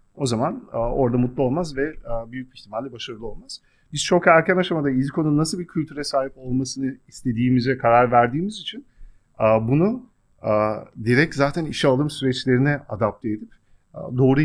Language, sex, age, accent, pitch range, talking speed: Turkish, male, 40-59, native, 105-140 Hz, 160 wpm